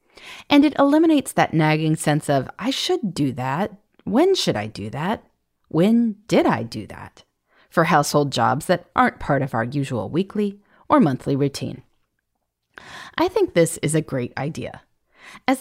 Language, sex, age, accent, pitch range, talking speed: English, female, 30-49, American, 135-215 Hz, 160 wpm